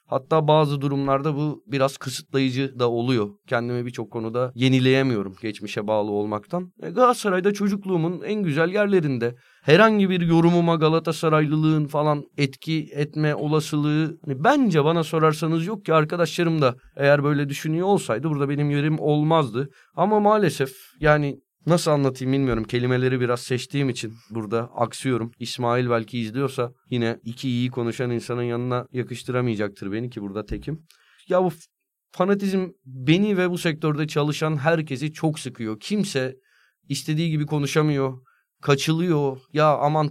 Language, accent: Turkish, native